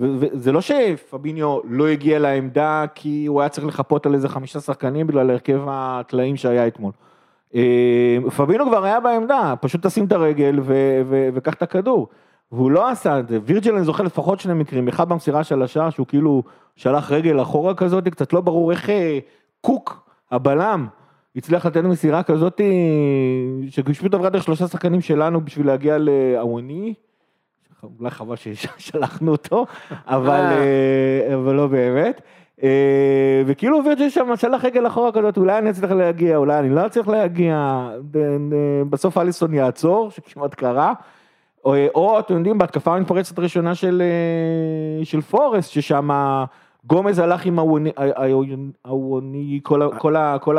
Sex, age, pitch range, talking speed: male, 30-49, 135-175 Hz, 135 wpm